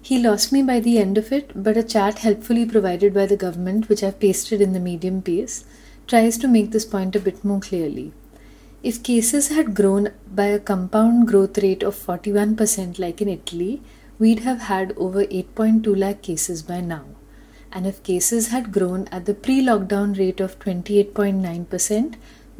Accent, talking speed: Indian, 180 wpm